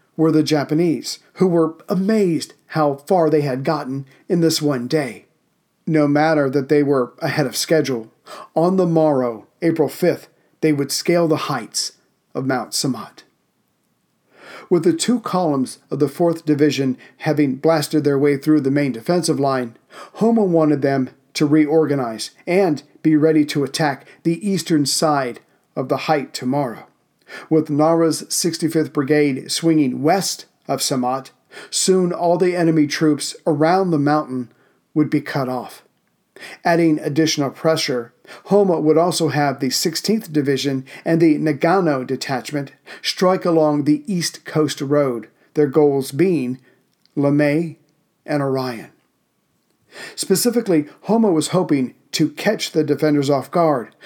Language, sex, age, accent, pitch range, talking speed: English, male, 40-59, American, 140-165 Hz, 140 wpm